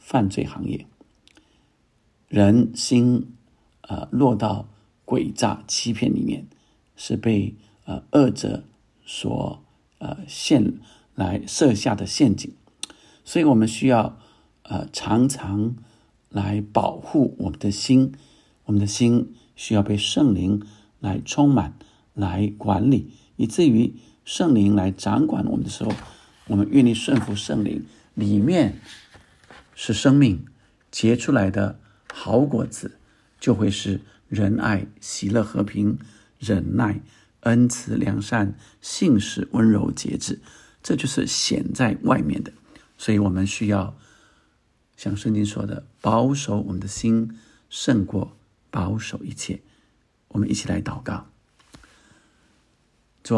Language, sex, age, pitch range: Chinese, male, 60-79, 100-115 Hz